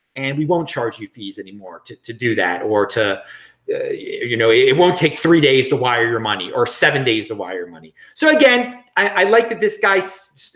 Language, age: English, 30-49